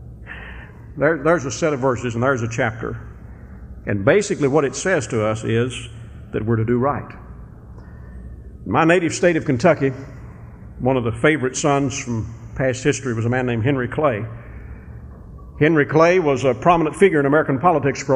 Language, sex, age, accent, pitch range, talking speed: English, male, 50-69, American, 110-145 Hz, 170 wpm